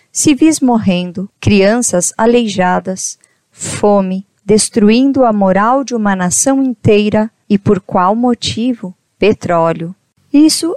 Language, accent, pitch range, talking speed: Portuguese, Brazilian, 195-255 Hz, 100 wpm